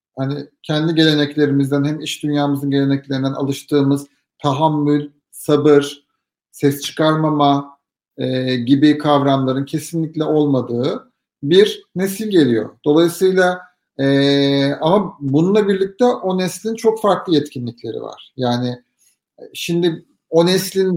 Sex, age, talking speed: male, 50-69, 100 wpm